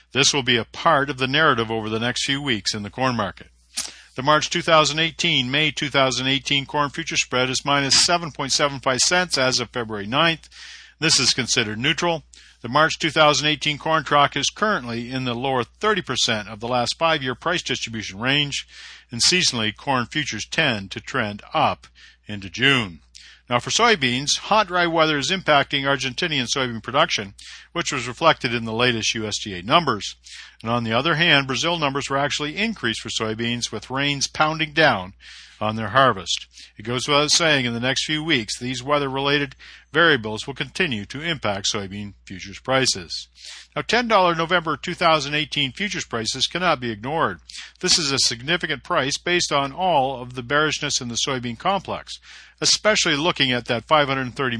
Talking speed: 165 wpm